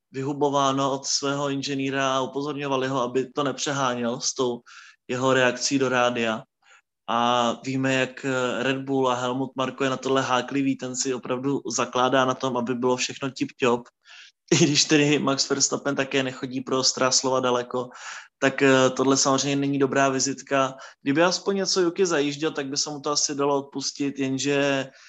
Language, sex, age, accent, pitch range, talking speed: Czech, male, 20-39, native, 130-140 Hz, 165 wpm